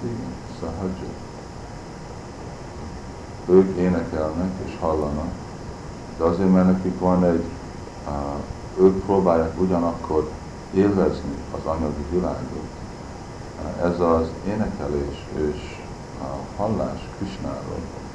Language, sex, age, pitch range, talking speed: Hungarian, male, 60-79, 75-90 Hz, 90 wpm